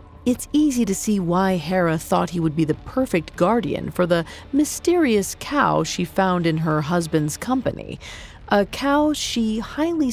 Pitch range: 165-230 Hz